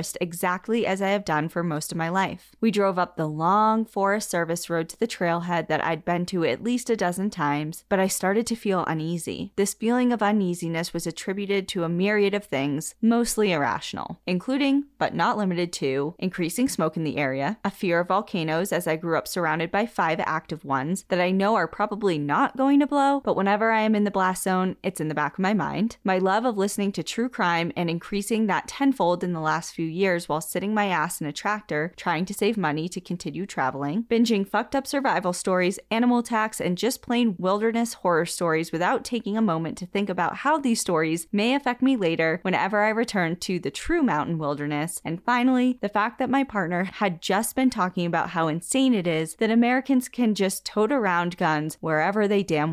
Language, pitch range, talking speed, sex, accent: English, 165-220 Hz, 215 wpm, female, American